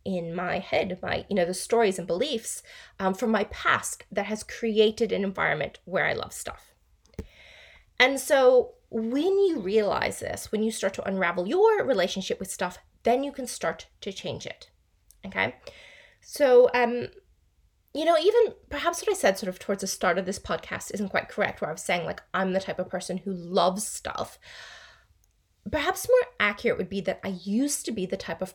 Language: English